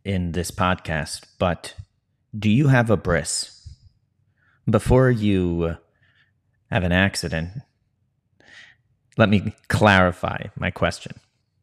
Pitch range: 90-115 Hz